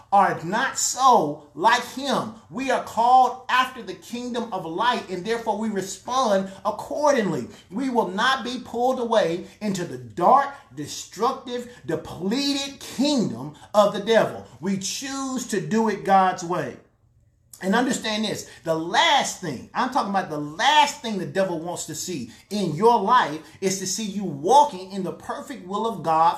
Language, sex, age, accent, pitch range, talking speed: English, male, 30-49, American, 175-245 Hz, 160 wpm